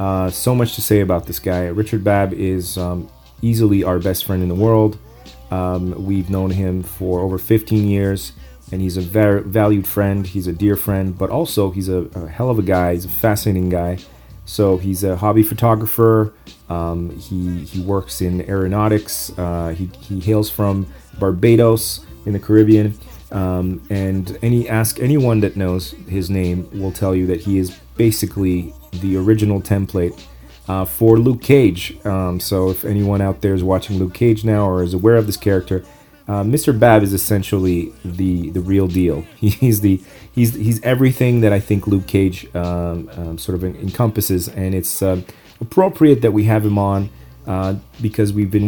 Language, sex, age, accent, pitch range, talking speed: English, male, 30-49, American, 90-105 Hz, 180 wpm